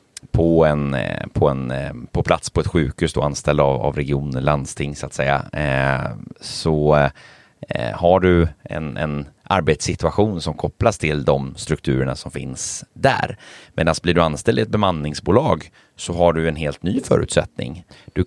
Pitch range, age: 80-95 Hz, 30-49